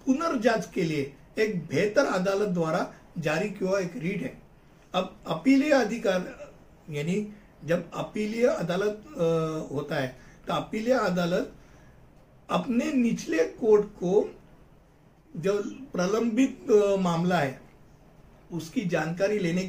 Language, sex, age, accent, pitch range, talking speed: Hindi, male, 60-79, native, 170-220 Hz, 105 wpm